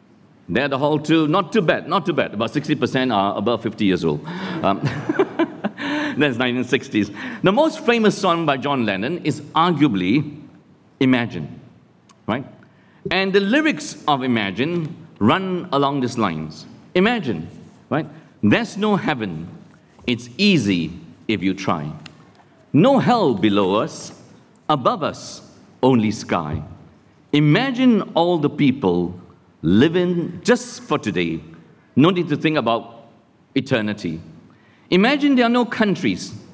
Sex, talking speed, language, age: male, 125 wpm, English, 50-69